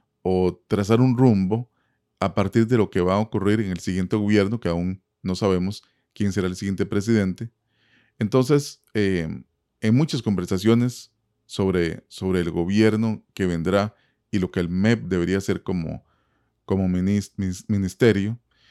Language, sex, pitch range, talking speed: Spanish, male, 95-120 Hz, 150 wpm